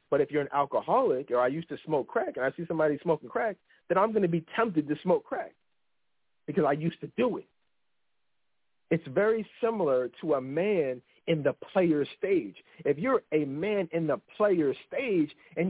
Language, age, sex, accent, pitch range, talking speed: English, 50-69, male, American, 150-210 Hz, 195 wpm